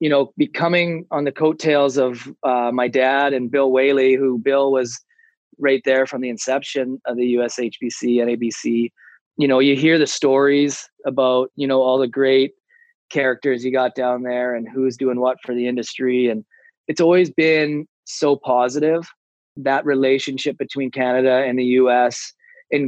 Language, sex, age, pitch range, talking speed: English, male, 20-39, 130-150 Hz, 170 wpm